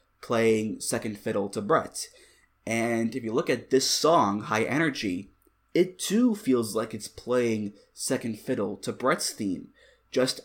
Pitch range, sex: 110-155 Hz, male